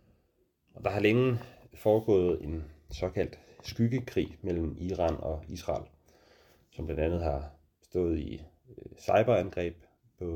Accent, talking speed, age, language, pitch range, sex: Danish, 110 wpm, 30-49, English, 80-100 Hz, male